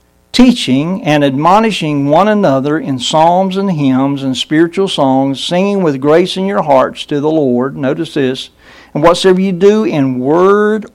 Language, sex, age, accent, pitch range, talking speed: English, male, 60-79, American, 130-170 Hz, 160 wpm